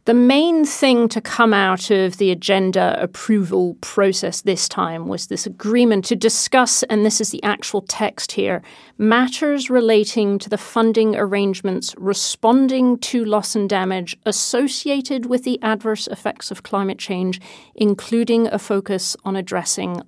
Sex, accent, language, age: female, British, English, 40-59